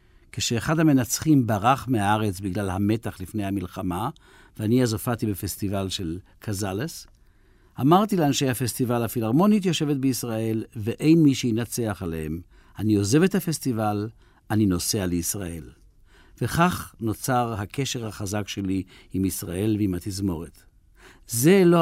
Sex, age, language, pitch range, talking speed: male, 60-79, Hebrew, 100-130 Hz, 115 wpm